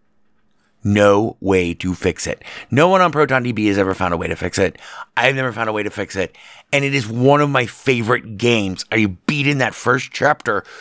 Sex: male